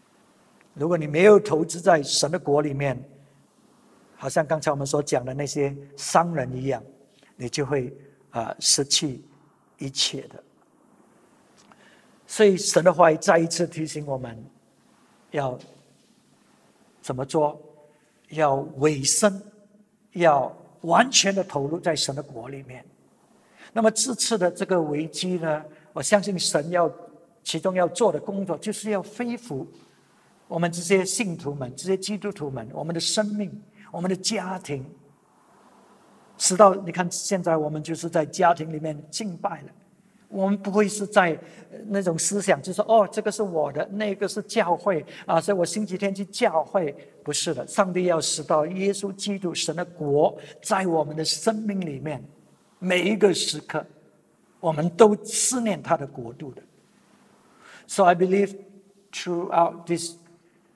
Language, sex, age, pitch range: English, male, 60-79, 150-200 Hz